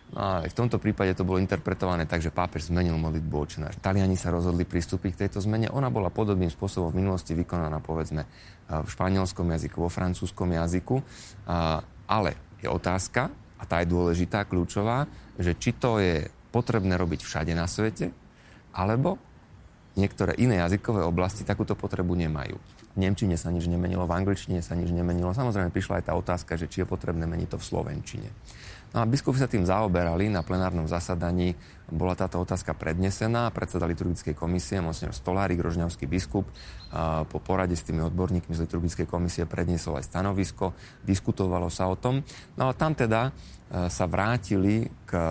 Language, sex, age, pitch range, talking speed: Slovak, male, 30-49, 85-100 Hz, 165 wpm